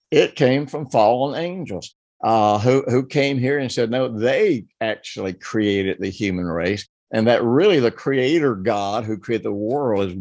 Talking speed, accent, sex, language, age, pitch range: 175 wpm, American, male, English, 60-79, 110-135 Hz